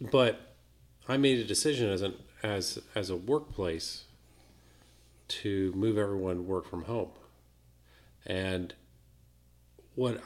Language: English